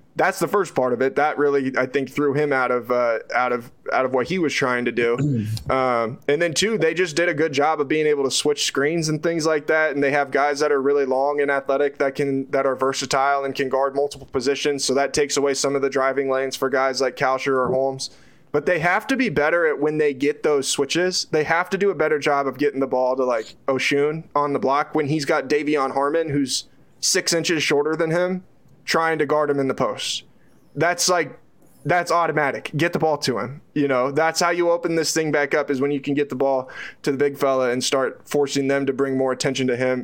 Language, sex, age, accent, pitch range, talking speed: English, male, 20-39, American, 135-160 Hz, 250 wpm